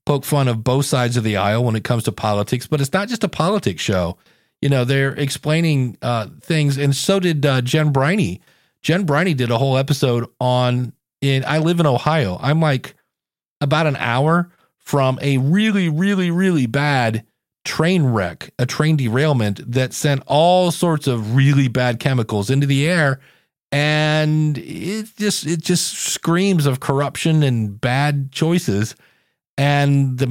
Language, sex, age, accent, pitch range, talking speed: English, male, 40-59, American, 120-155 Hz, 165 wpm